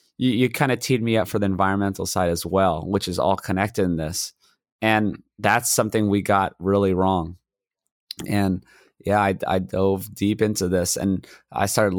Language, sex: English, male